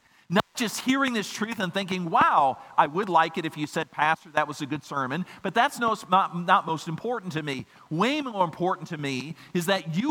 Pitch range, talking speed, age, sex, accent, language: 155-225 Hz, 225 wpm, 50-69, male, American, English